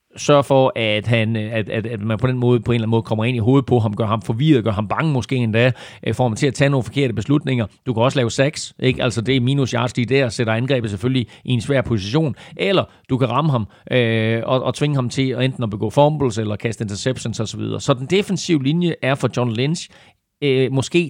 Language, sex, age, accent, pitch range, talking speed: Danish, male, 40-59, native, 115-140 Hz, 240 wpm